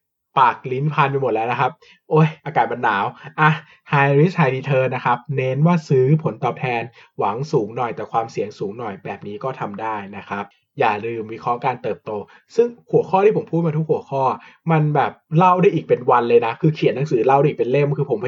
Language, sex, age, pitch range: Thai, male, 20-39, 130-160 Hz